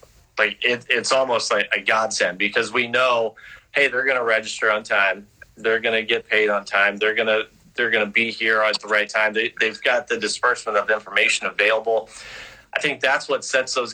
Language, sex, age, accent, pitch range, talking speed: English, male, 30-49, American, 105-115 Hz, 215 wpm